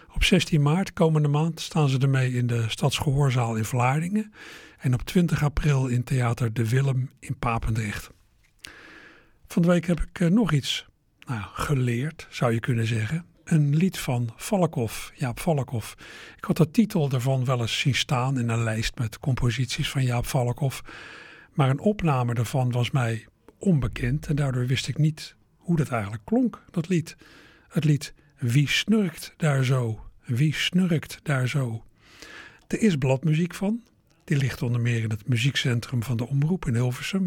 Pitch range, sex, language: 125-155 Hz, male, Dutch